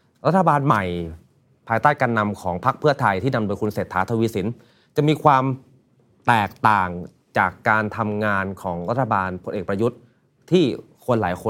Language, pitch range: Thai, 95-130 Hz